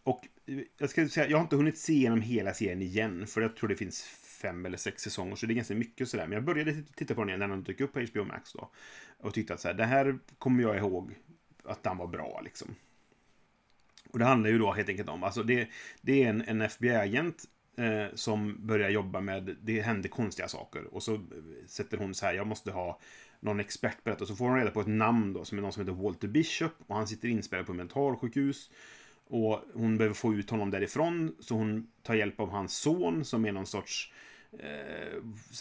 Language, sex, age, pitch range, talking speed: Swedish, male, 30-49, 105-120 Hz, 235 wpm